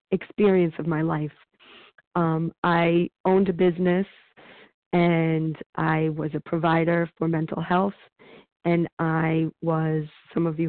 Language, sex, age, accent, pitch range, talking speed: English, female, 40-59, American, 160-185 Hz, 130 wpm